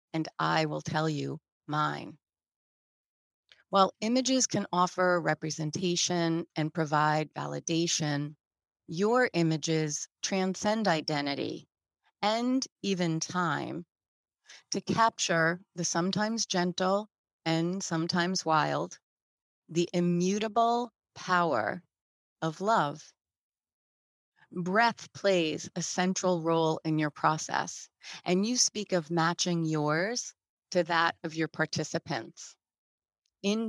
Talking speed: 95 wpm